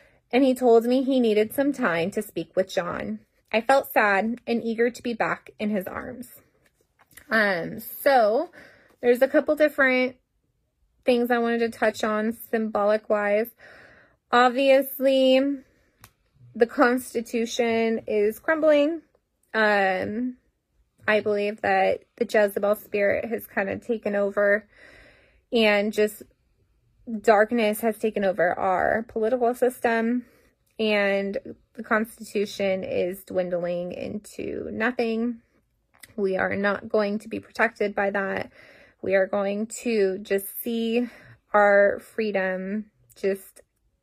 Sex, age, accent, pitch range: female, 20-39, American, 205-245 Hz